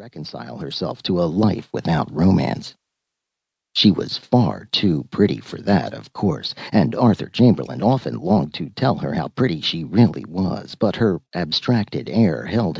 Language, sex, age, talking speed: English, male, 50-69, 160 wpm